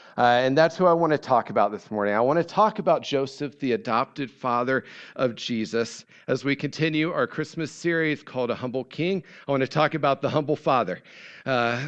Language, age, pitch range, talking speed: English, 40-59, 135-180 Hz, 205 wpm